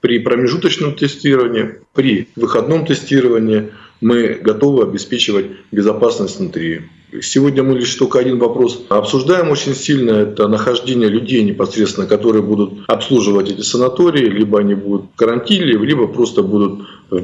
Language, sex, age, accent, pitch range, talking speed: Russian, male, 20-39, native, 105-135 Hz, 130 wpm